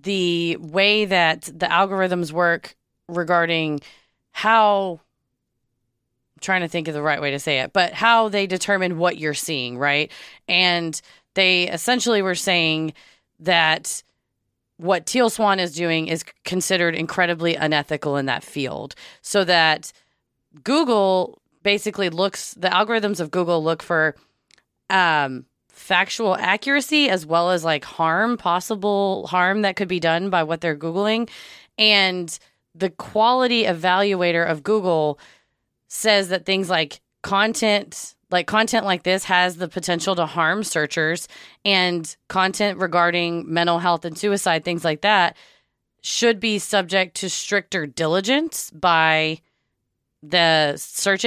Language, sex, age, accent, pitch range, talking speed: English, female, 20-39, American, 160-195 Hz, 135 wpm